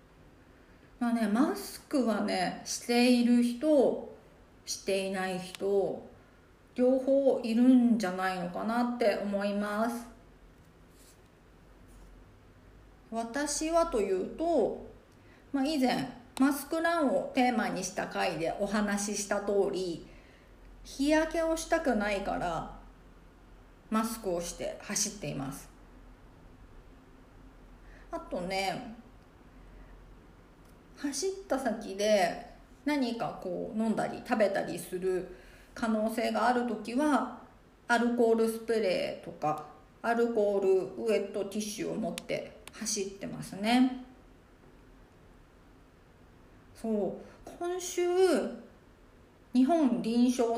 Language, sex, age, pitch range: Japanese, female, 40-59, 200-255 Hz